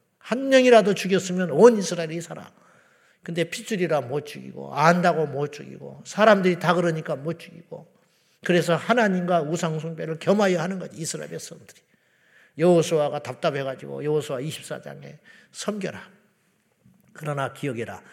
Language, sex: Korean, male